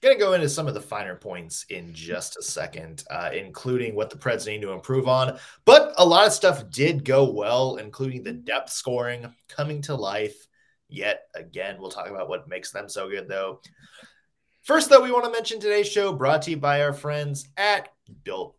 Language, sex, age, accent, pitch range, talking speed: English, male, 20-39, American, 125-160 Hz, 205 wpm